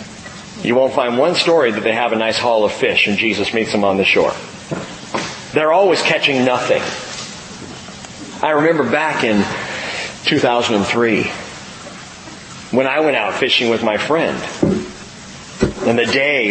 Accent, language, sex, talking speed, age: American, English, male, 145 wpm, 40-59